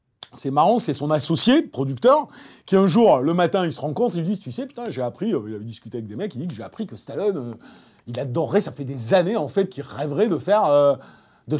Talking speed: 265 wpm